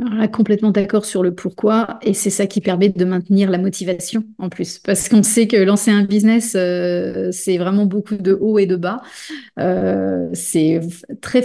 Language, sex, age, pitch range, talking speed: French, female, 30-49, 185-215 Hz, 195 wpm